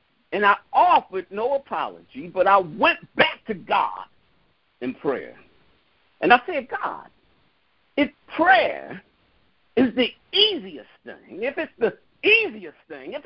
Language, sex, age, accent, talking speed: English, male, 50-69, American, 130 wpm